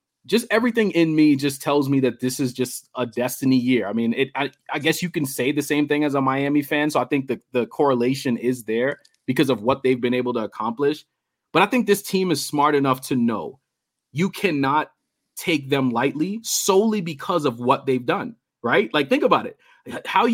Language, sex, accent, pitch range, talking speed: English, male, American, 135-185 Hz, 215 wpm